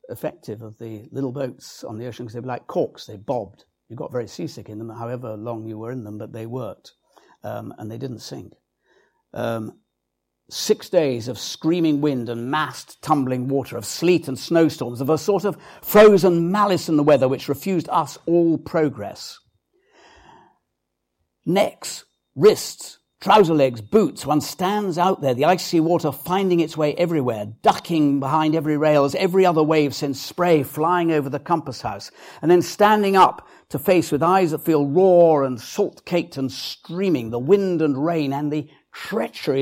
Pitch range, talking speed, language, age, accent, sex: 125-175 Hz, 175 wpm, English, 50-69, British, male